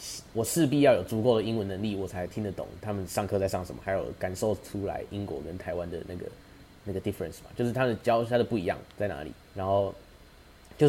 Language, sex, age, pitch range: Chinese, male, 20-39, 95-120 Hz